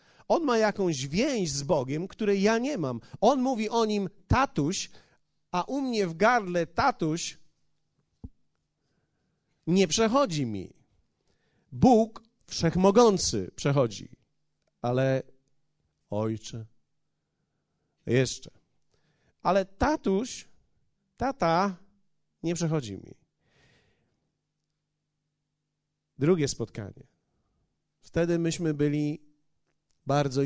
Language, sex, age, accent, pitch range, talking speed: Polish, male, 40-59, native, 135-180 Hz, 85 wpm